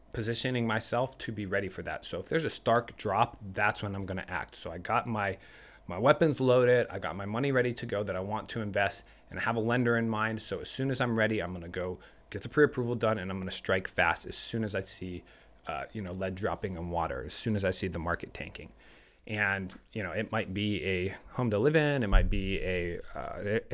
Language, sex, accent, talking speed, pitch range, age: English, male, American, 255 wpm, 95-115 Hz, 30-49